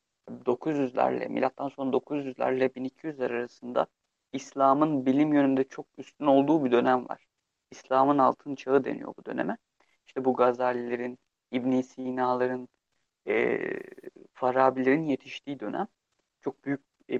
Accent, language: native, Turkish